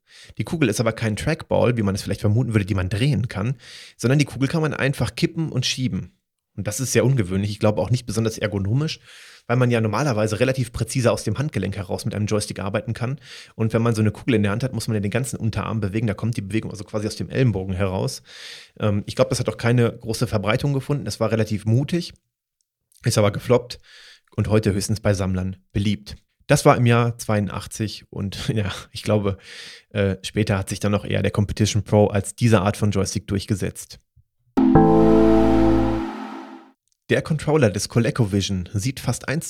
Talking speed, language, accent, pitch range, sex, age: 200 wpm, German, German, 105-125 Hz, male, 30-49